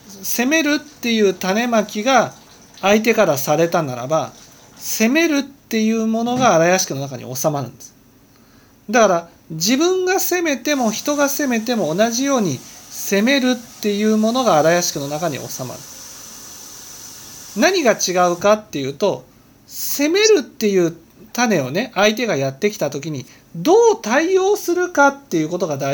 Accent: native